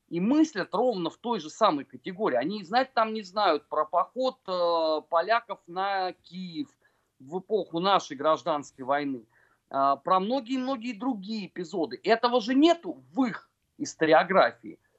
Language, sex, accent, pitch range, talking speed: Russian, male, native, 175-255 Hz, 140 wpm